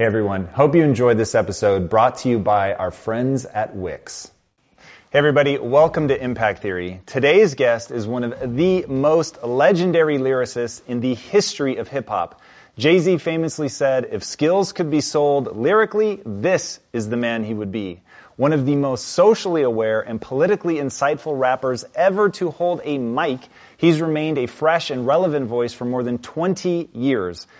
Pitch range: 120-160 Hz